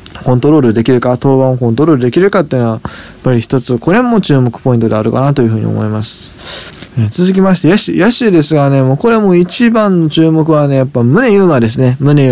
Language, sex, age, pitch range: Japanese, male, 20-39, 130-180 Hz